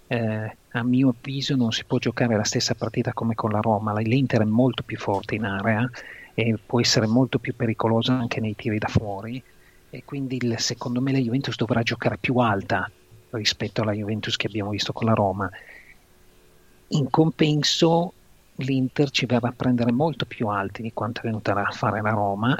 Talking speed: 185 wpm